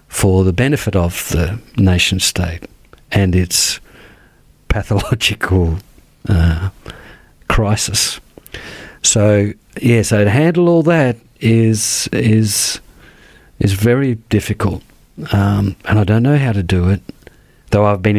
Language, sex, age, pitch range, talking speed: English, male, 50-69, 100-120 Hz, 130 wpm